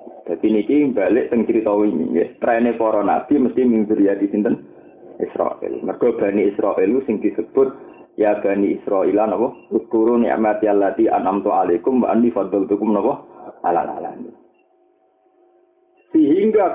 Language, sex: Indonesian, male